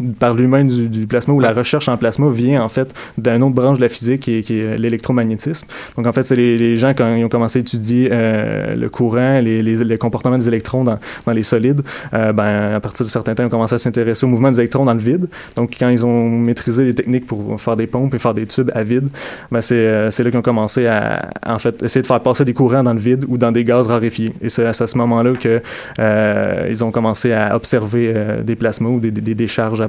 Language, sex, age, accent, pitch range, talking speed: French, male, 20-39, Canadian, 115-125 Hz, 265 wpm